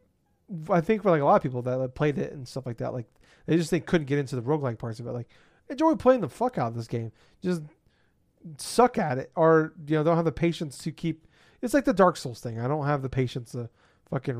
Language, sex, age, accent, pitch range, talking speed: English, male, 30-49, American, 125-170 Hz, 260 wpm